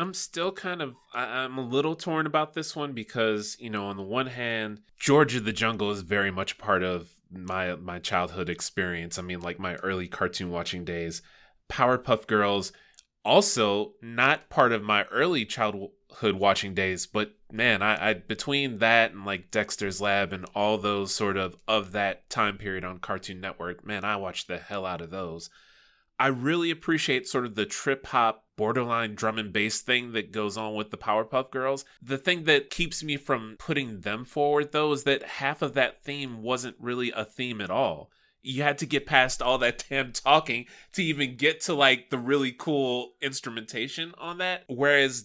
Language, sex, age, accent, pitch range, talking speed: English, male, 20-39, American, 100-135 Hz, 190 wpm